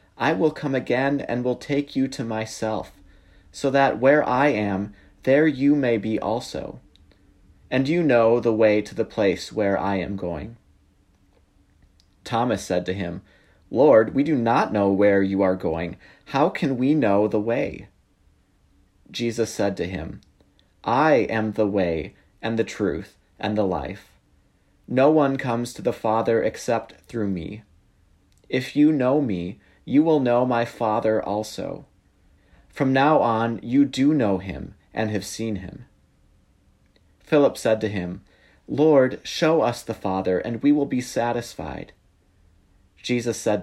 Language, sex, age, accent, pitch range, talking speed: English, male, 30-49, American, 95-130 Hz, 155 wpm